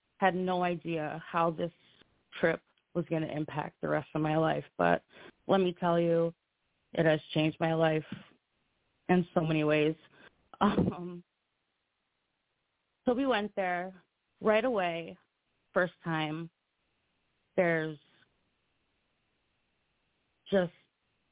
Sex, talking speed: female, 115 wpm